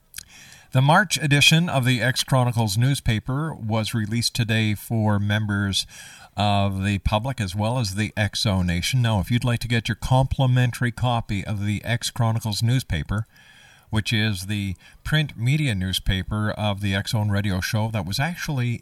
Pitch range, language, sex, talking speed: 100-130 Hz, English, male, 160 wpm